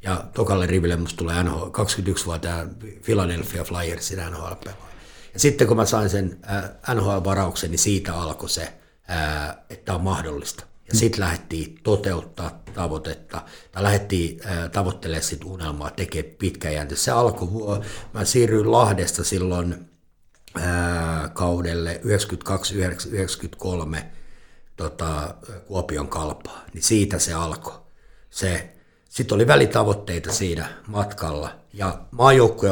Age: 60-79